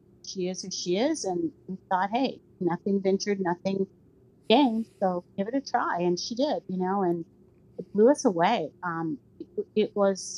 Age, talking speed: 40-59, 185 wpm